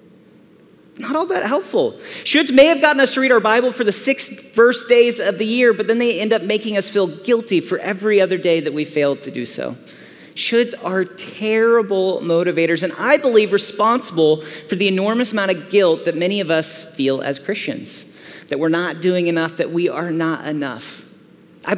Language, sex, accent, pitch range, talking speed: English, male, American, 155-215 Hz, 200 wpm